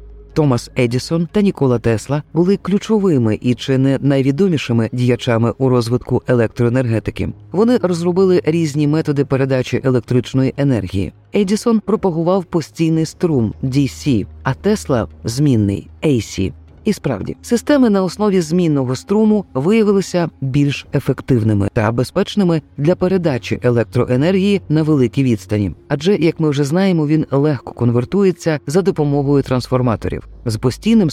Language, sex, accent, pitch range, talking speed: Ukrainian, female, native, 120-175 Hz, 125 wpm